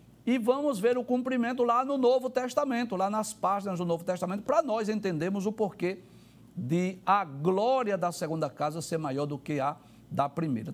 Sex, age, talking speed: male, 60-79, 185 wpm